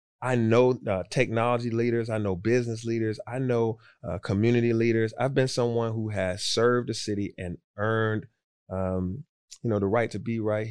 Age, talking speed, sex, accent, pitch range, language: 30-49, 180 wpm, male, American, 100-120 Hz, English